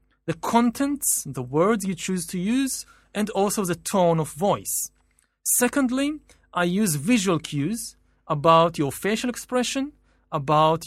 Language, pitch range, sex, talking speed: English, 150-210 Hz, male, 130 wpm